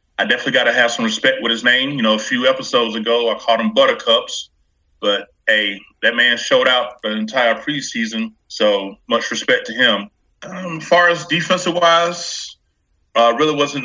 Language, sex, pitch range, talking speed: English, male, 115-155 Hz, 175 wpm